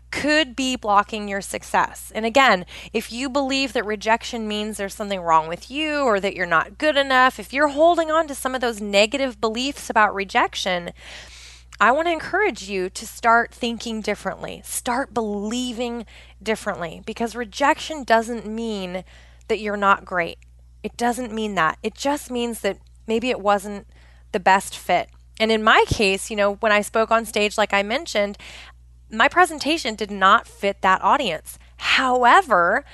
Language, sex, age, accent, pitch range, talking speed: English, female, 20-39, American, 200-270 Hz, 170 wpm